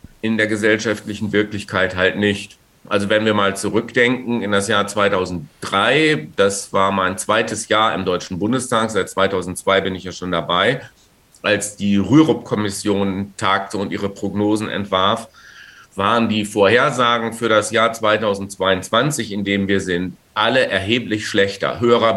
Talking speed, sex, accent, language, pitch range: 145 wpm, male, German, German, 100-115 Hz